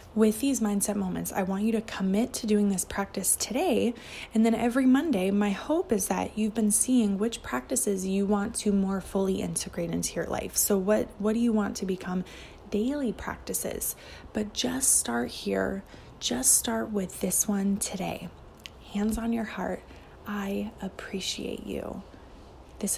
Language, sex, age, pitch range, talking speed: English, female, 20-39, 195-225 Hz, 165 wpm